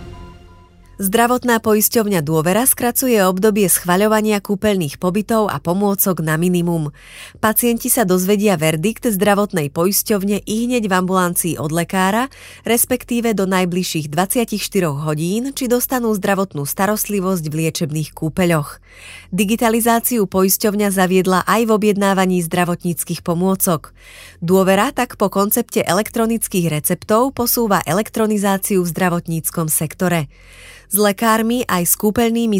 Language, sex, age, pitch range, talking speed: Slovak, female, 30-49, 170-220 Hz, 110 wpm